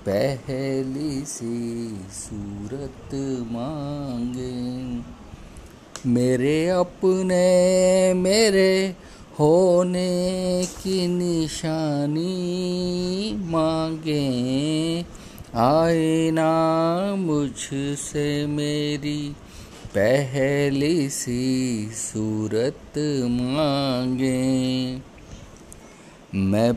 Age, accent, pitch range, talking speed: 50-69, native, 130-175 Hz, 45 wpm